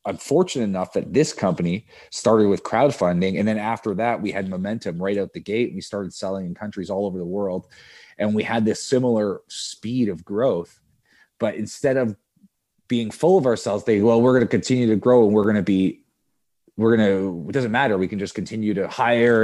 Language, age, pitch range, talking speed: English, 30-49, 100-125 Hz, 210 wpm